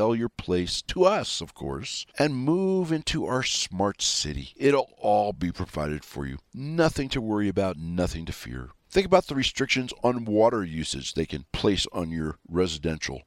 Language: English